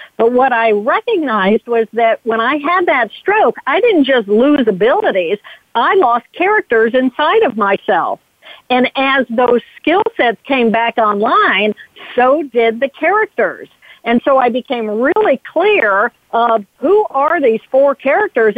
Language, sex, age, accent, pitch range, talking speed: English, female, 50-69, American, 225-305 Hz, 150 wpm